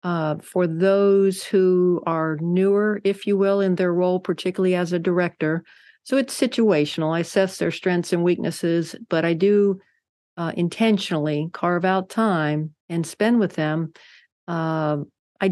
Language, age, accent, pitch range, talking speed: English, 50-69, American, 160-190 Hz, 150 wpm